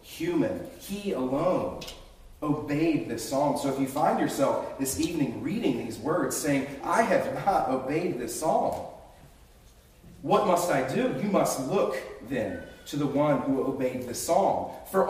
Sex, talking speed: male, 155 wpm